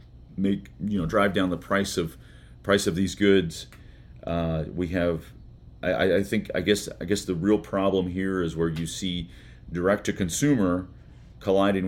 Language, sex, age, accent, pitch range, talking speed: English, male, 40-59, American, 80-95 Hz, 160 wpm